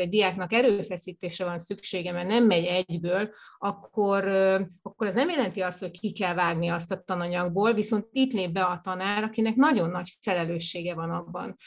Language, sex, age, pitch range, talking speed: Hungarian, female, 30-49, 180-210 Hz, 175 wpm